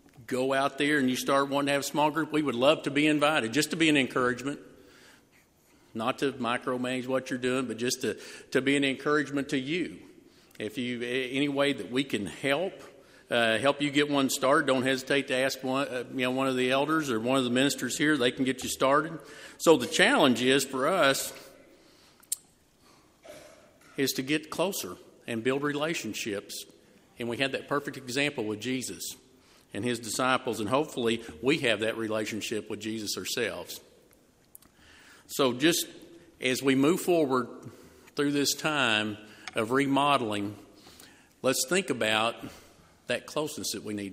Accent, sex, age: American, male, 50-69